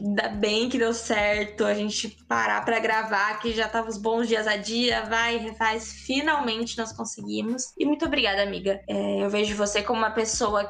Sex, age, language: female, 10-29, Portuguese